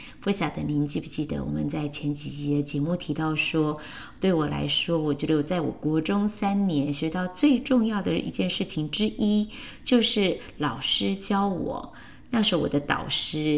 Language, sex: Chinese, female